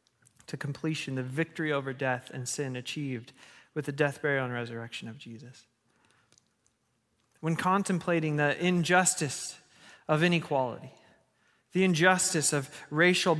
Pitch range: 135-180 Hz